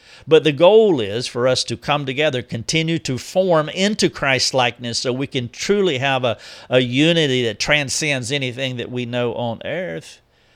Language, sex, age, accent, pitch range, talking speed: English, male, 50-69, American, 120-160 Hz, 170 wpm